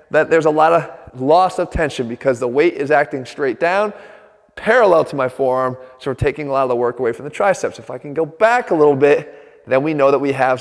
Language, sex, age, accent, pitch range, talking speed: English, male, 30-49, American, 155-190 Hz, 255 wpm